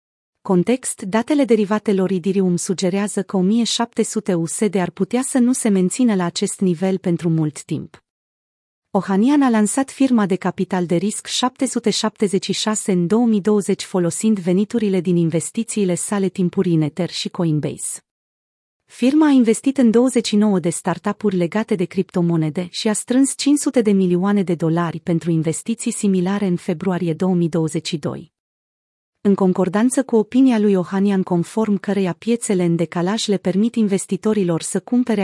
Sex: female